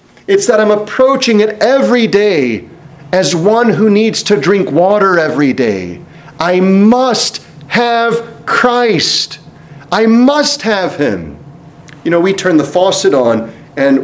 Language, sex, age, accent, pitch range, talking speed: English, male, 40-59, American, 150-225 Hz, 135 wpm